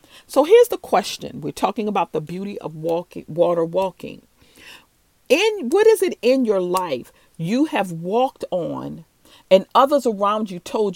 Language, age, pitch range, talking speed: English, 40-59, 175-275 Hz, 160 wpm